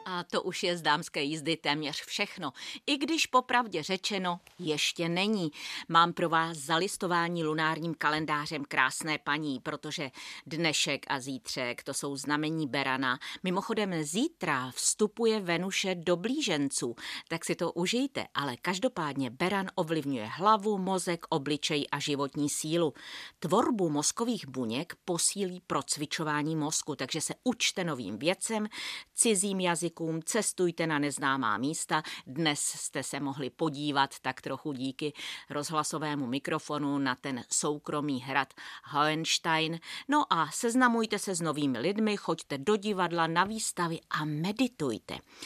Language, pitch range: Czech, 145-180 Hz